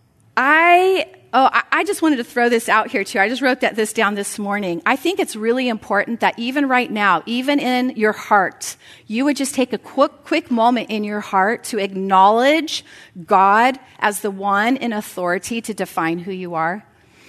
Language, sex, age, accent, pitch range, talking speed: English, female, 40-59, American, 215-295 Hz, 195 wpm